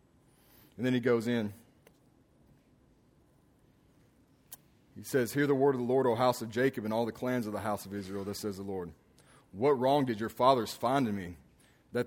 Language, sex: English, male